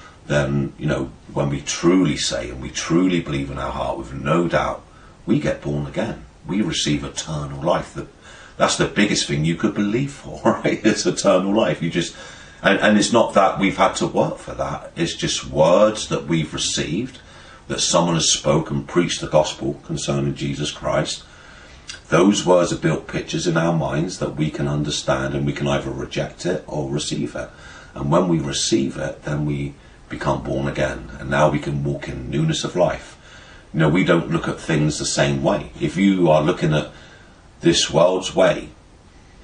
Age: 40-59